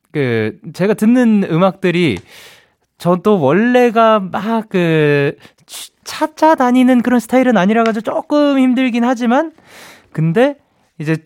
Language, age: Korean, 20-39